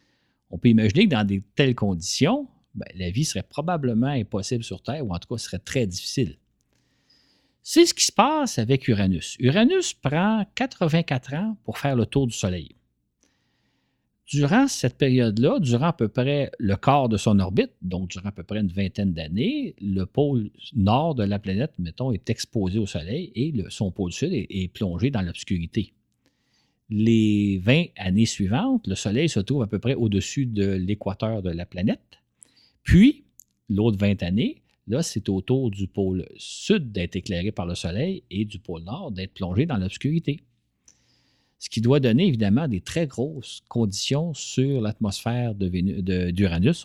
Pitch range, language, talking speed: 95-130 Hz, French, 170 wpm